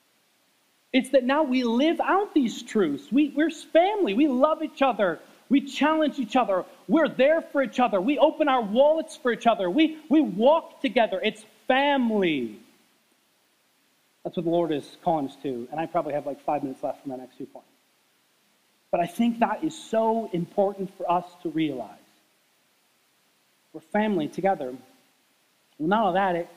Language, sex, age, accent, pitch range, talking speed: English, male, 30-49, American, 180-260 Hz, 170 wpm